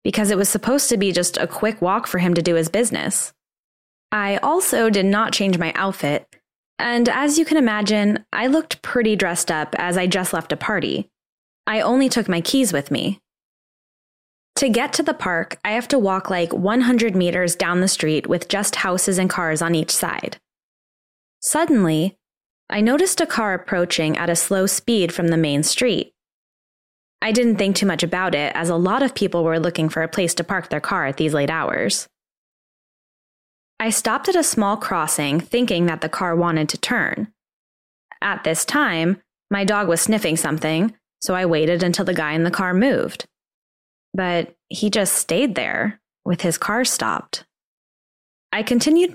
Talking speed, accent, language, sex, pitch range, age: 185 wpm, American, English, female, 170-225 Hz, 20-39